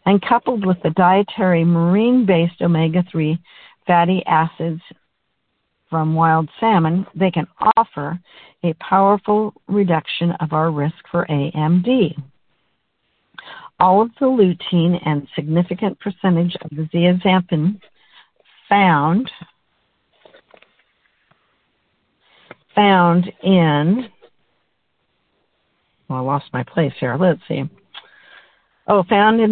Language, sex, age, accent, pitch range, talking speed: English, female, 60-79, American, 165-200 Hz, 95 wpm